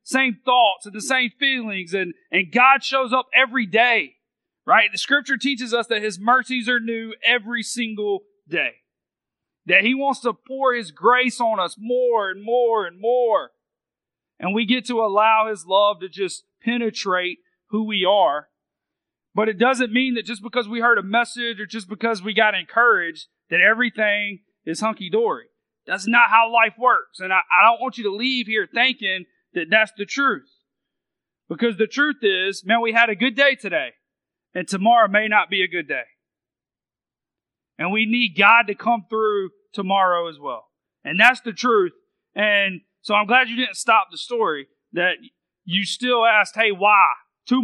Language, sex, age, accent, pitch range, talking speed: English, male, 40-59, American, 200-245 Hz, 180 wpm